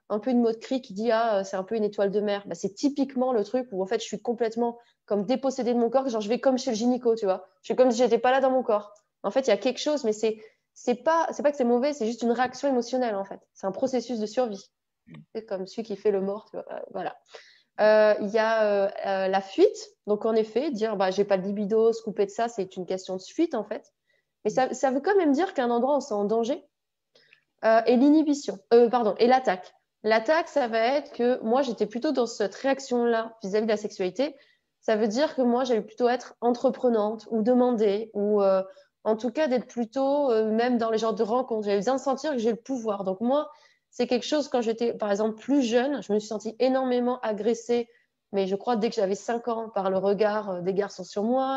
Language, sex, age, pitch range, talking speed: French, female, 20-39, 210-255 Hz, 250 wpm